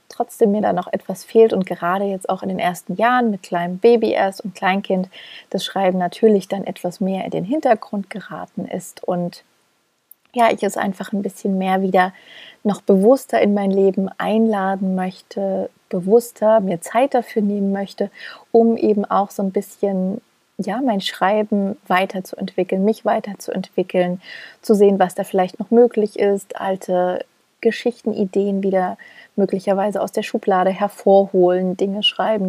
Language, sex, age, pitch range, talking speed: German, female, 30-49, 185-215 Hz, 155 wpm